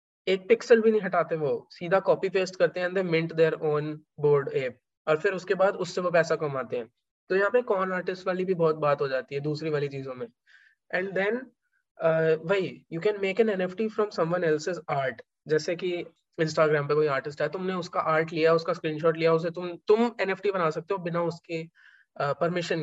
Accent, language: native, Hindi